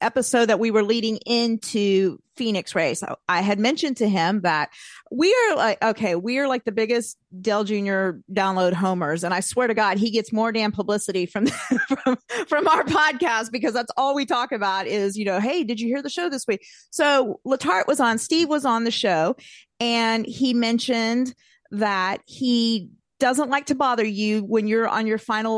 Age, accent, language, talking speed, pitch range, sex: 40-59, American, English, 200 wpm, 215-265 Hz, female